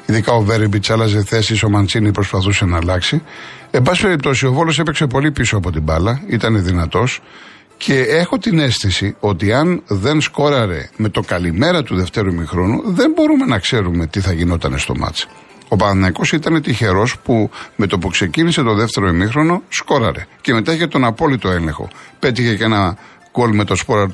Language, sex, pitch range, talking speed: Greek, male, 105-140 Hz, 180 wpm